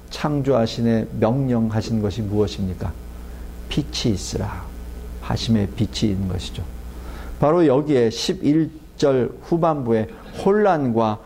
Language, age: Korean, 50-69